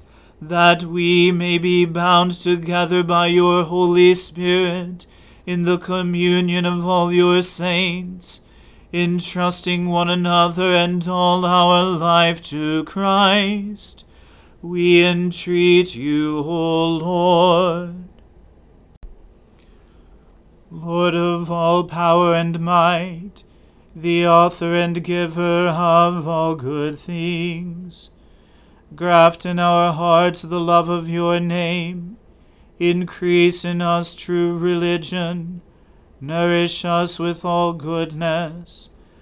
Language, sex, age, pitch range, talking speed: English, male, 40-59, 170-175 Hz, 100 wpm